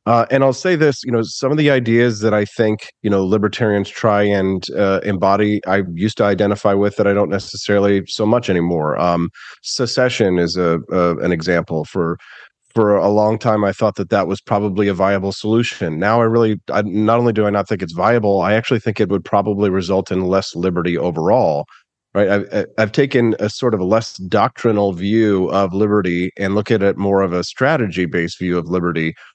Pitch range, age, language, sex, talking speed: 95-115 Hz, 30-49, English, male, 210 wpm